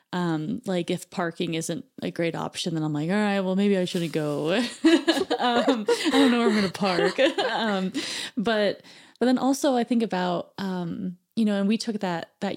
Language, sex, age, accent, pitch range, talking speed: English, female, 20-39, American, 175-220 Hz, 205 wpm